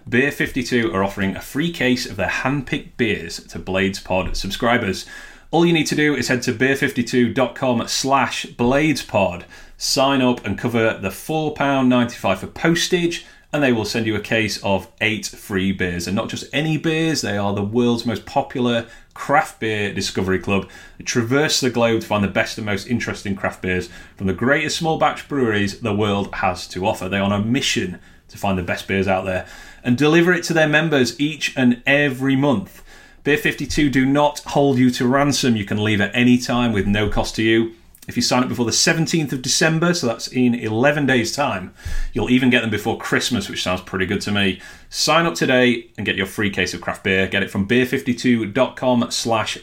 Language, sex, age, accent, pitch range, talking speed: English, male, 30-49, British, 100-135 Hz, 200 wpm